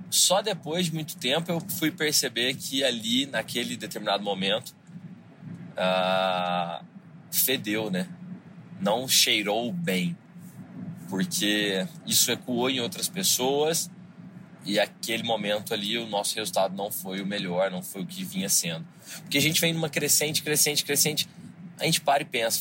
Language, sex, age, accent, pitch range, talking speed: Portuguese, male, 20-39, Brazilian, 125-180 Hz, 145 wpm